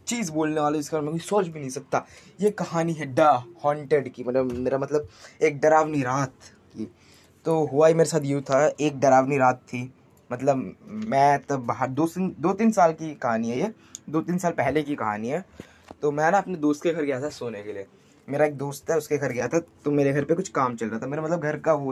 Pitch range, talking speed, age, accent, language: 130-165 Hz, 235 wpm, 20-39, native, Hindi